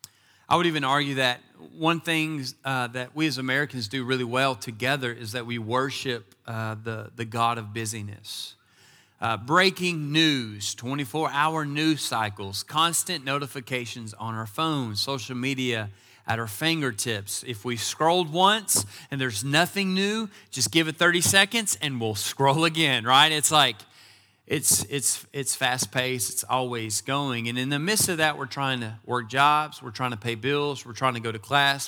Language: English